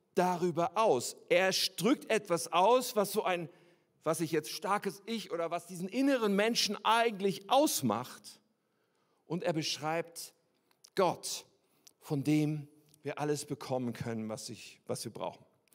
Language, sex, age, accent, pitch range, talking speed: German, male, 50-69, German, 140-220 Hz, 135 wpm